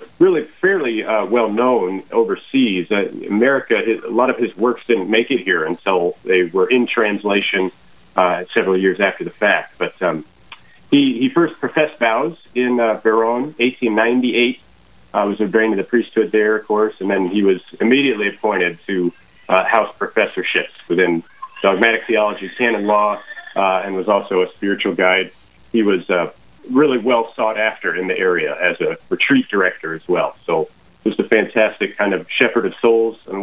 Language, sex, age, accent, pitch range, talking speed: English, male, 40-59, American, 100-125 Hz, 180 wpm